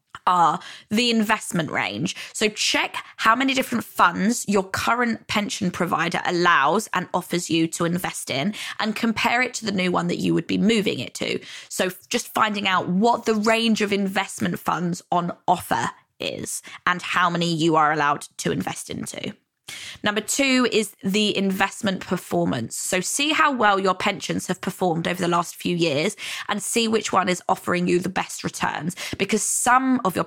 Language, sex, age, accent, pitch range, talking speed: English, female, 20-39, British, 180-220 Hz, 180 wpm